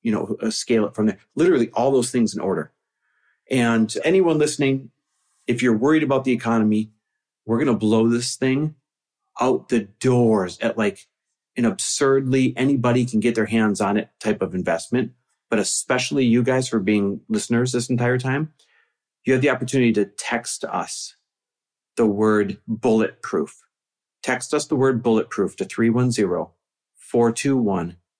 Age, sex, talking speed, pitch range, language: 40-59, male, 155 wpm, 105-125 Hz, English